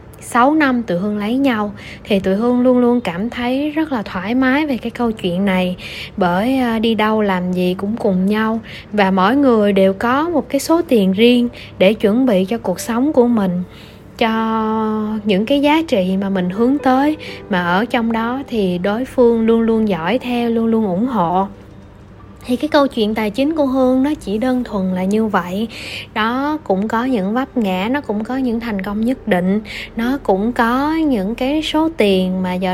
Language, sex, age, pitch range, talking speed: Vietnamese, female, 20-39, 195-260 Hz, 200 wpm